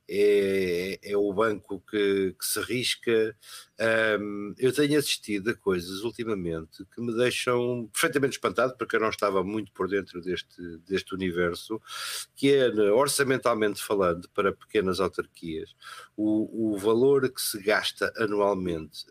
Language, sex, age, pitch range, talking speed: Portuguese, male, 50-69, 90-125 Hz, 140 wpm